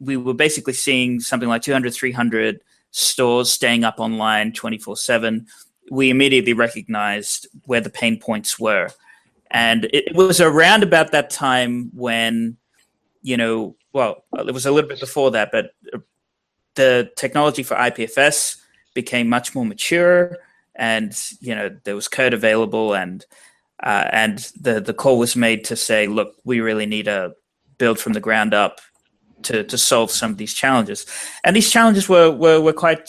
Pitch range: 110-140 Hz